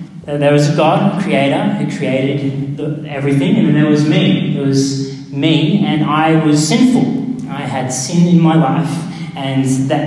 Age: 30-49